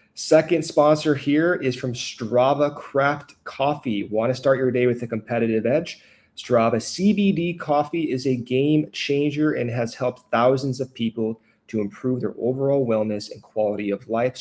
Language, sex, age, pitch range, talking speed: English, male, 30-49, 115-140 Hz, 160 wpm